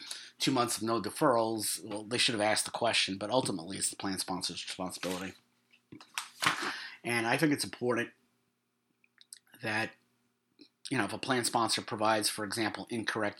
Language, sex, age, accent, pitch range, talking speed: English, male, 30-49, American, 100-120 Hz, 155 wpm